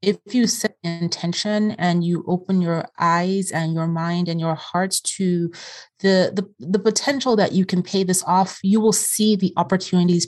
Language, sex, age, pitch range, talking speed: English, female, 30-49, 170-195 Hz, 180 wpm